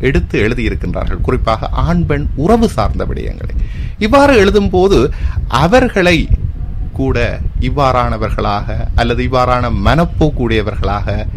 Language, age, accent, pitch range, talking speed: Tamil, 30-49, native, 95-125 Hz, 90 wpm